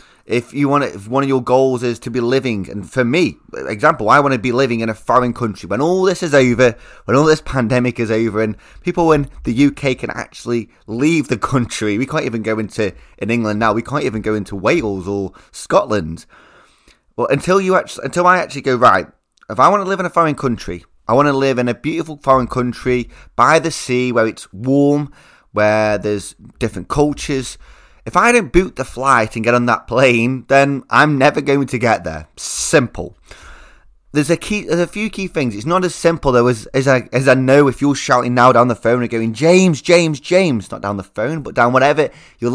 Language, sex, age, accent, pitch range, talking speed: English, male, 20-39, British, 120-160 Hz, 225 wpm